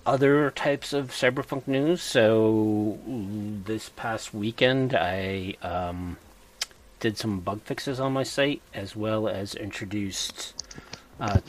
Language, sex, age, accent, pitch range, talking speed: English, male, 40-59, American, 95-125 Hz, 120 wpm